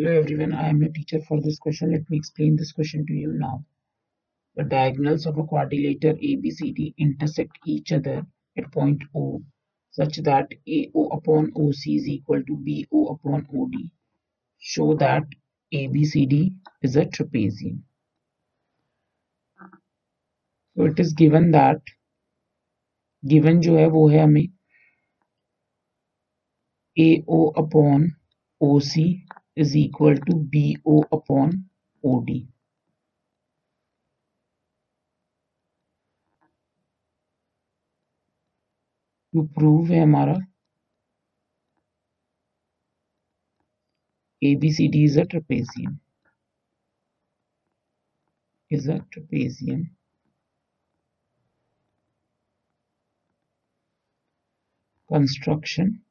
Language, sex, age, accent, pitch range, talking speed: Hindi, male, 50-69, native, 145-160 Hz, 85 wpm